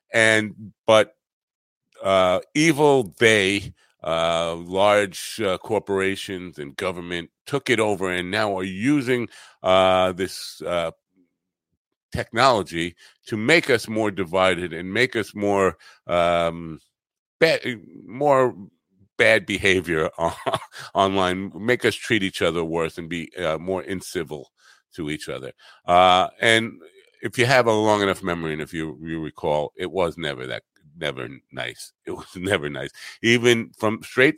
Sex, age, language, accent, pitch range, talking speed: male, 50-69, English, American, 90-115 Hz, 135 wpm